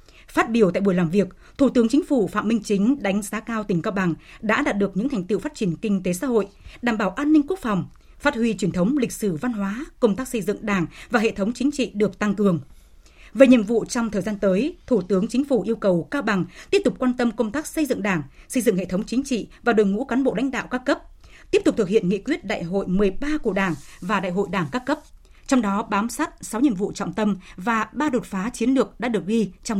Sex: female